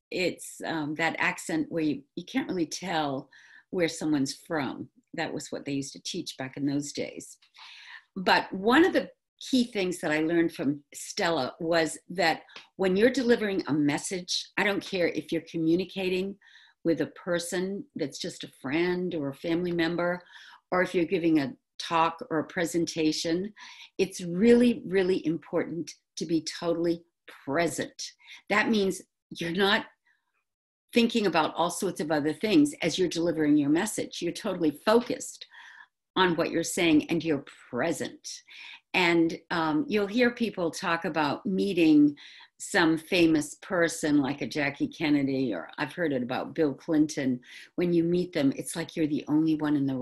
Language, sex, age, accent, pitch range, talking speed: English, female, 50-69, American, 155-200 Hz, 165 wpm